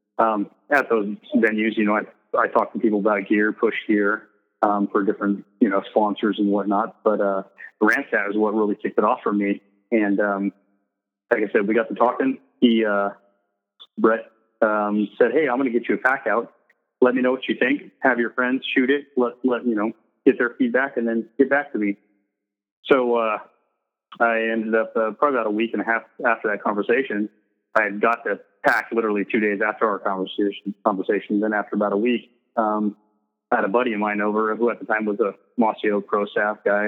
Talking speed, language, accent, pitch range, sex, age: 215 wpm, English, American, 105-115 Hz, male, 30-49